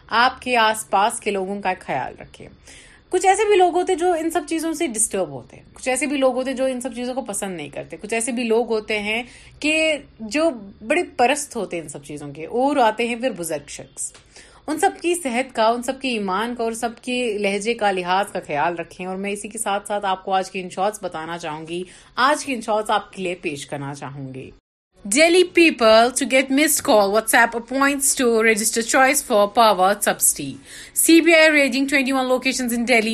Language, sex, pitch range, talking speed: Urdu, female, 200-265 Hz, 215 wpm